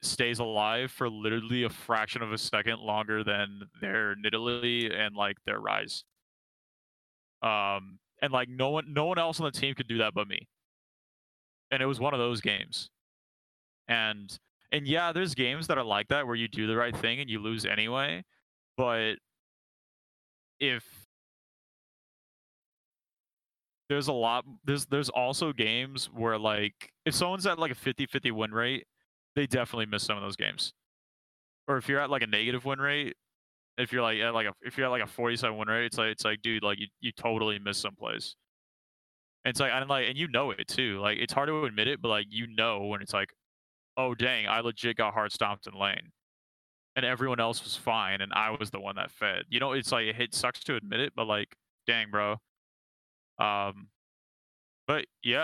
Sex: male